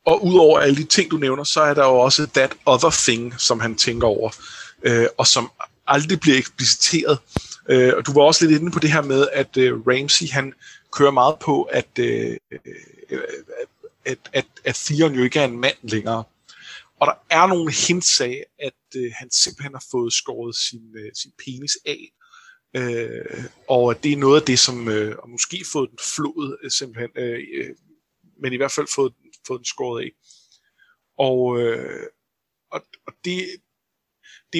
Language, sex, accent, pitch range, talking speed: Danish, male, native, 125-165 Hz, 165 wpm